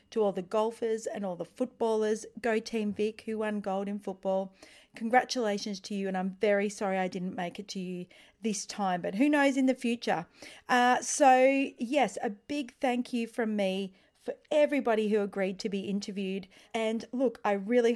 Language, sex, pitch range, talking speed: English, female, 195-240 Hz, 190 wpm